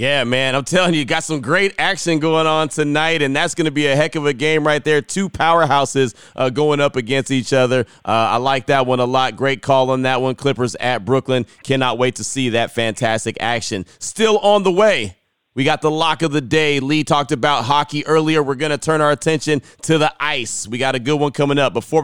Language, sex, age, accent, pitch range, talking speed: English, male, 30-49, American, 130-155 Hz, 235 wpm